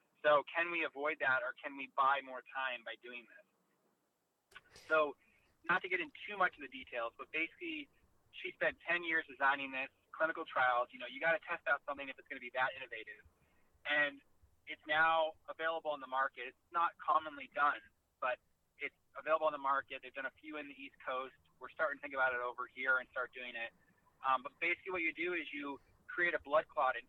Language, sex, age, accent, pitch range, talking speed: English, male, 20-39, American, 130-180 Hz, 220 wpm